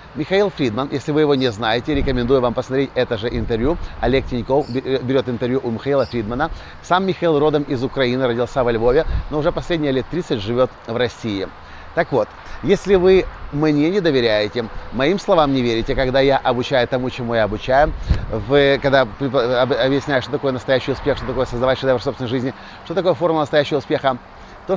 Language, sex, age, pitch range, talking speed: Russian, male, 30-49, 120-150 Hz, 175 wpm